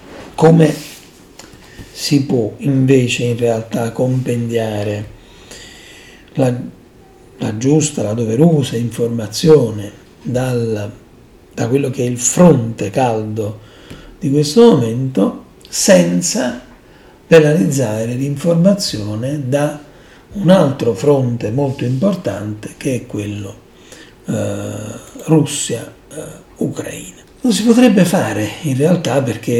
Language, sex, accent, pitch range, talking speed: Italian, male, native, 115-155 Hz, 90 wpm